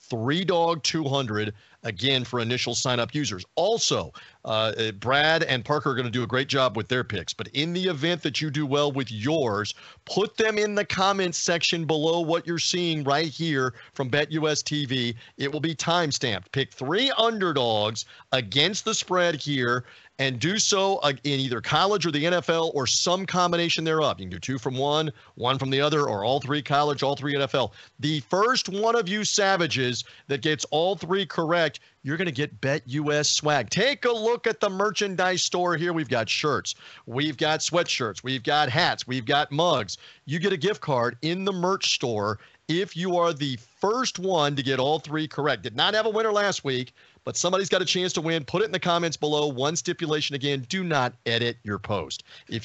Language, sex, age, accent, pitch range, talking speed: English, male, 40-59, American, 130-180 Hz, 200 wpm